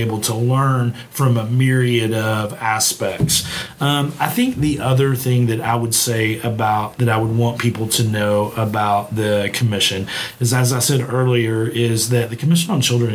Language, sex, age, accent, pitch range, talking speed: English, male, 40-59, American, 105-120 Hz, 185 wpm